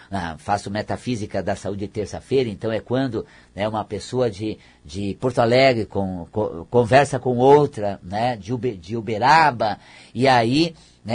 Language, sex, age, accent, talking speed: Portuguese, male, 50-69, Brazilian, 135 wpm